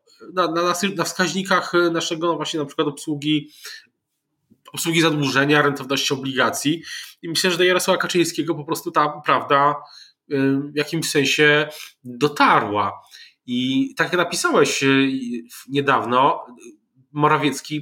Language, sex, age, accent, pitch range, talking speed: Polish, male, 20-39, native, 130-165 Hz, 115 wpm